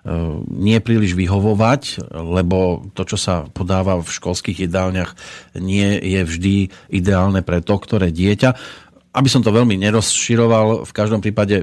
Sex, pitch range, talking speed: male, 95-110 Hz, 140 wpm